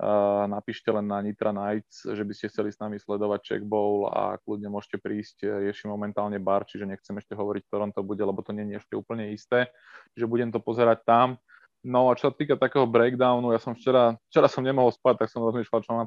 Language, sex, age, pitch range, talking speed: Slovak, male, 20-39, 105-115 Hz, 220 wpm